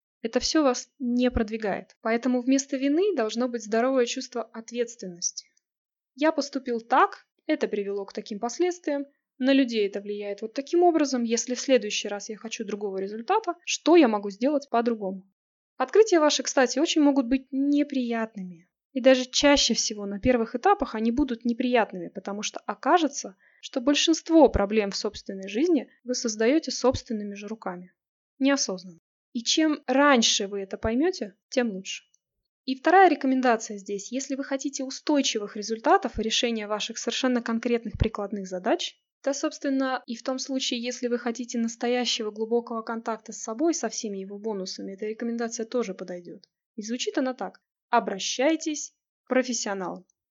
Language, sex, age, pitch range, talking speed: Russian, female, 20-39, 220-275 Hz, 150 wpm